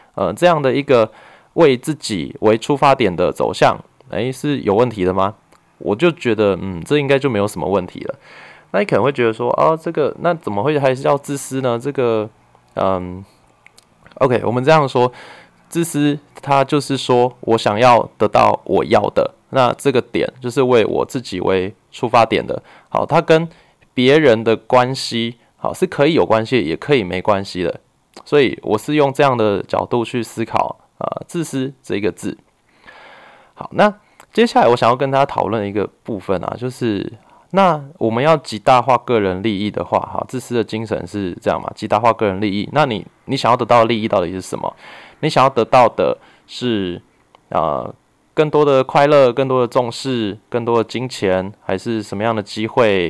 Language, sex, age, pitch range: Chinese, male, 20-39, 105-140 Hz